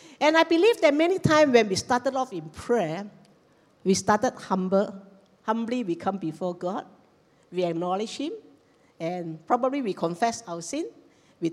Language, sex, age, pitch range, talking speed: English, female, 50-69, 185-270 Hz, 155 wpm